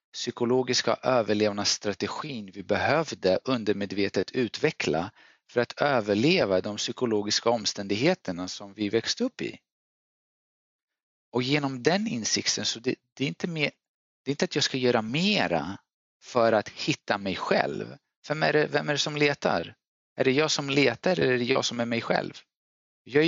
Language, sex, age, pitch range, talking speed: English, male, 40-59, 105-140 Hz, 160 wpm